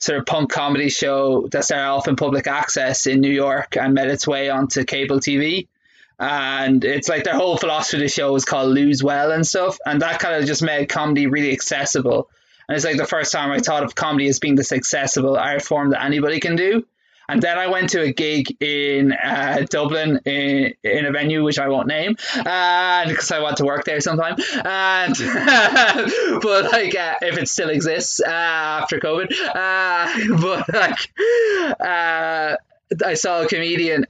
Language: English